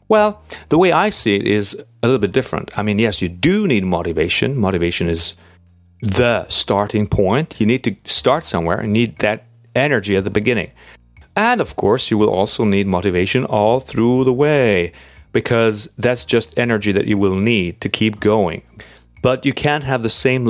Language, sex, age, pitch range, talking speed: English, male, 30-49, 95-120 Hz, 185 wpm